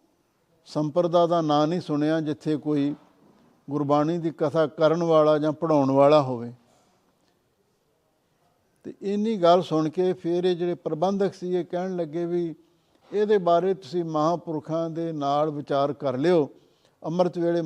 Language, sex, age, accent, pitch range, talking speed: English, male, 60-79, Indian, 140-165 Hz, 125 wpm